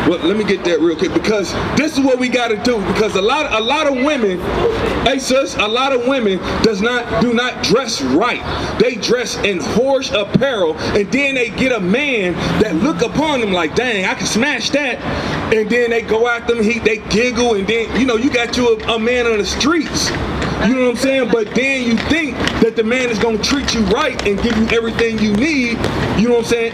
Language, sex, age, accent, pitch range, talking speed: English, male, 30-49, American, 205-250 Hz, 235 wpm